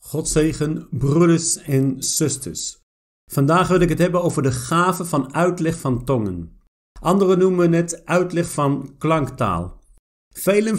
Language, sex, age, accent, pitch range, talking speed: Dutch, male, 50-69, Dutch, 145-190 Hz, 130 wpm